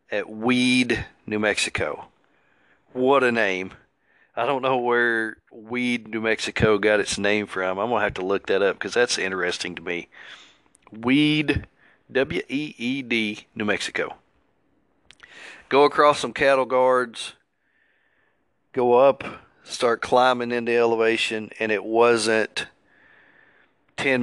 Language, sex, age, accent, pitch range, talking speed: English, male, 40-59, American, 100-120 Hz, 135 wpm